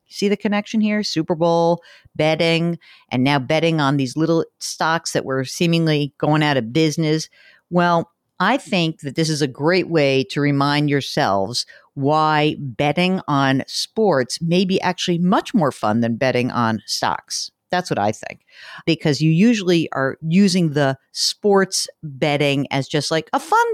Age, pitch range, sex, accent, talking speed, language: 50-69, 140-185 Hz, female, American, 160 wpm, English